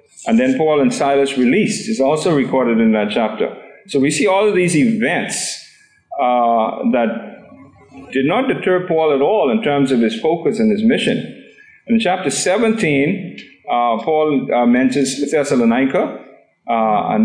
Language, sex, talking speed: English, male, 155 wpm